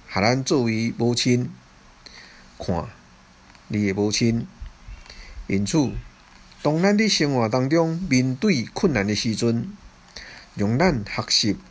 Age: 50-69